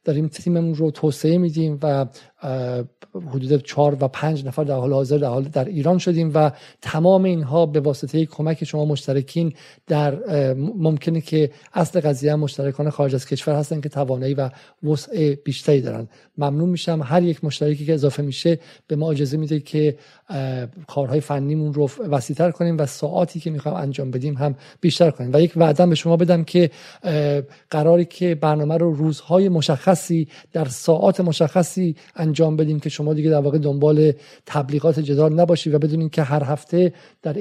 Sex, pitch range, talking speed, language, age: male, 145-165 Hz, 165 wpm, Persian, 50-69